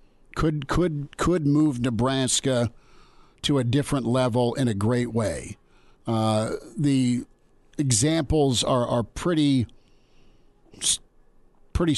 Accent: American